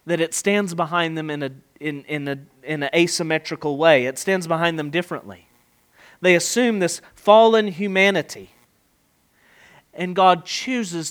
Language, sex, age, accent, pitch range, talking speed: English, male, 40-59, American, 170-270 Hz, 145 wpm